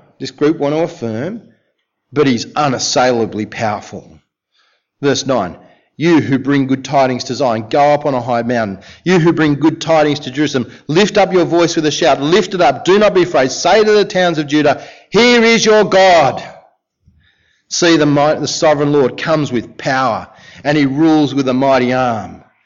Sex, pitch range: male, 140-180 Hz